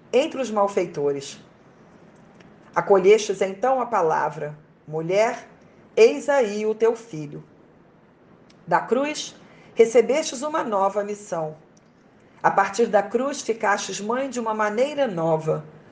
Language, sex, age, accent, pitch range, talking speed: Portuguese, female, 50-69, Brazilian, 185-240 Hz, 110 wpm